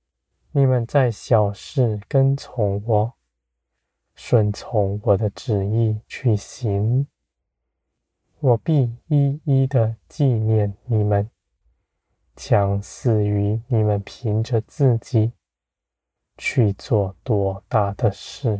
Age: 20-39